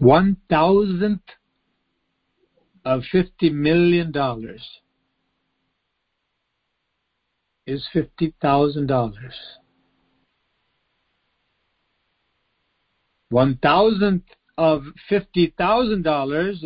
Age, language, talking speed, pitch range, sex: 60-79, English, 60 wpm, 130-175 Hz, male